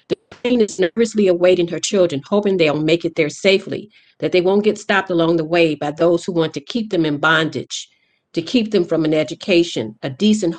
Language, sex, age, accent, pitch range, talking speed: English, female, 50-69, American, 160-200 Hz, 205 wpm